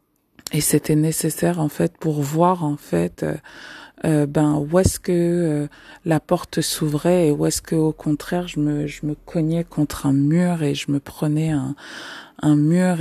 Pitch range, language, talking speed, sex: 150-175 Hz, French, 180 wpm, female